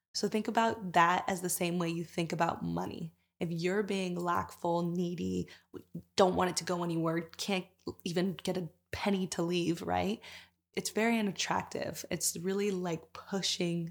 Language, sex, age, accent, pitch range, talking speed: English, female, 20-39, American, 170-195 Hz, 165 wpm